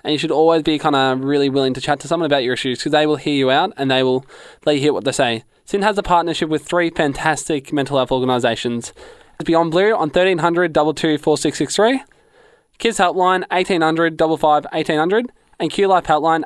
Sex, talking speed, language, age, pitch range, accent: male, 180 wpm, English, 20-39, 140-185 Hz, Australian